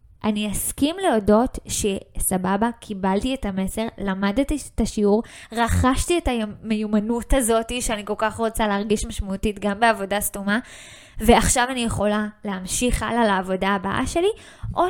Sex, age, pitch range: female, 20-39, 205-265 Hz